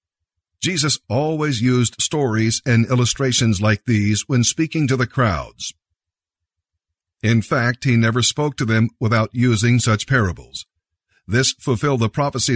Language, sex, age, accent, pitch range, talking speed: English, male, 50-69, American, 90-130 Hz, 135 wpm